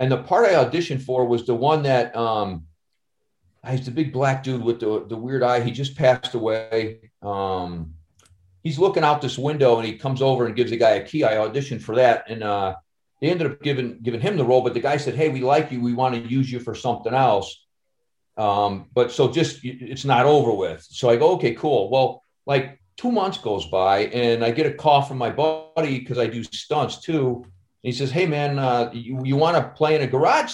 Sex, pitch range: male, 115-150 Hz